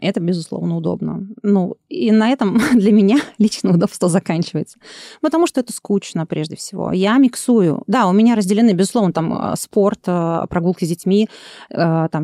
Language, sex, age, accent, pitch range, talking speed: Russian, female, 30-49, native, 180-220 Hz, 150 wpm